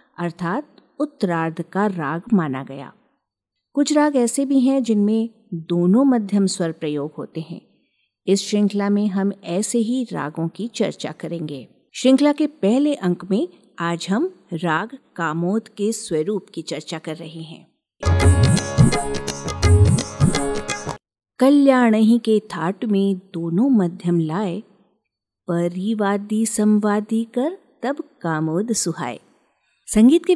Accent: native